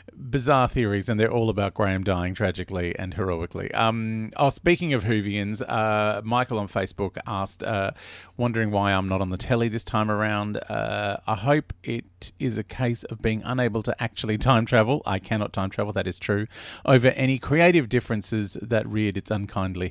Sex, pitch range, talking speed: male, 95-115 Hz, 185 wpm